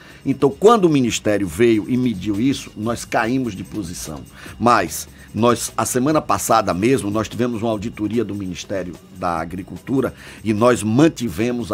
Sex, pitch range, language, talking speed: male, 105-125 Hz, Portuguese, 145 wpm